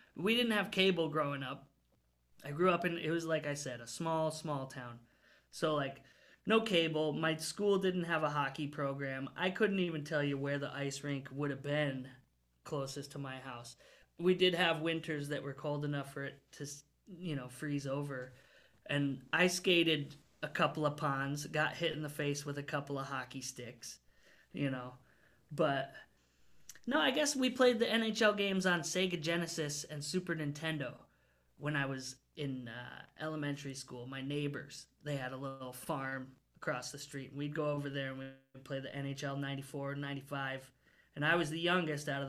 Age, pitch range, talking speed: 20-39, 135-160 Hz, 185 wpm